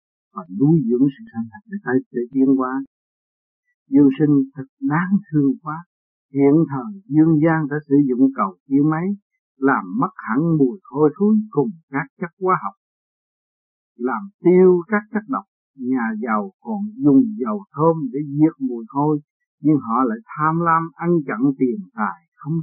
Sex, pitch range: male, 145-205 Hz